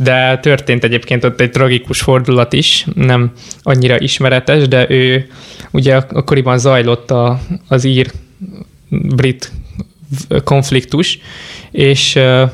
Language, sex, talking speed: Hungarian, male, 100 wpm